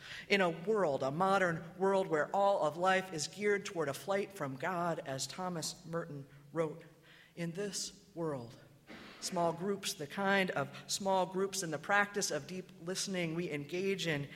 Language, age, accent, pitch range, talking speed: English, 40-59, American, 145-190 Hz, 165 wpm